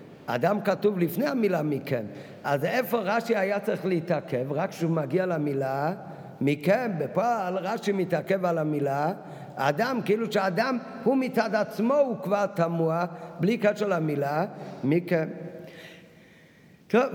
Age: 50-69